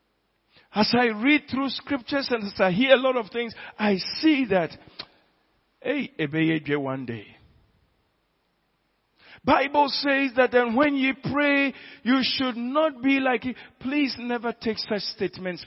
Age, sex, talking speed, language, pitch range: 50-69, male, 145 wpm, English, 180-250 Hz